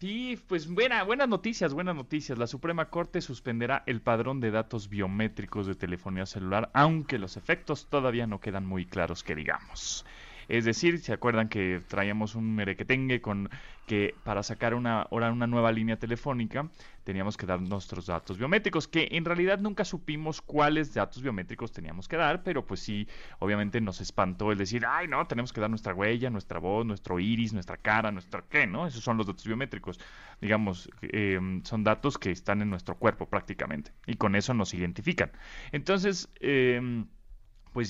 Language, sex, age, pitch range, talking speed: Spanish, male, 30-49, 105-150 Hz, 175 wpm